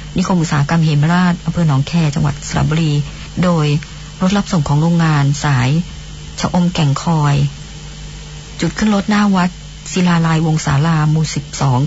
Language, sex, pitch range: Thai, male, 155-185 Hz